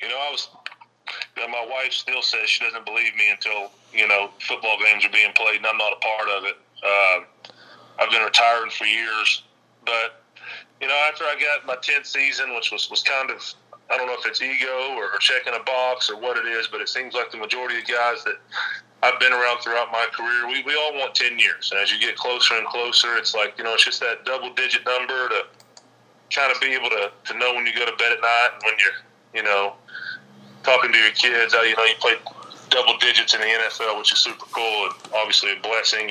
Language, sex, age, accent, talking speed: English, male, 30-49, American, 235 wpm